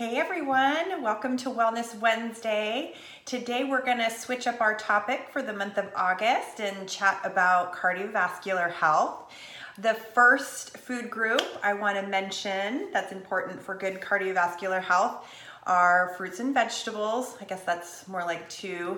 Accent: American